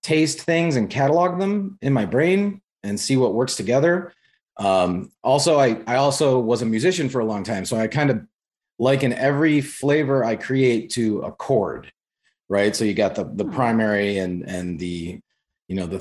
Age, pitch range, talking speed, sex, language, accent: 30-49, 105-135 Hz, 185 wpm, male, English, American